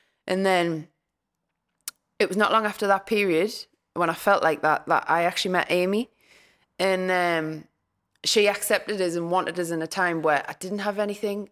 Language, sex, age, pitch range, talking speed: English, female, 20-39, 170-195 Hz, 180 wpm